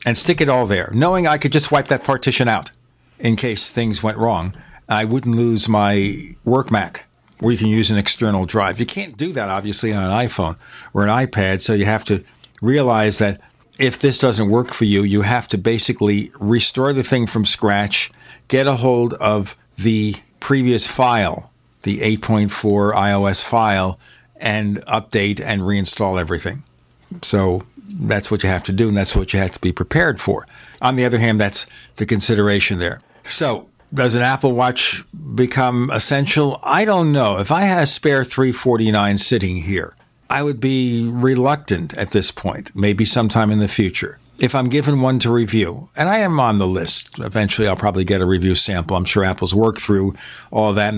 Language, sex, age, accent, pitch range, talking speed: English, male, 50-69, American, 100-125 Hz, 190 wpm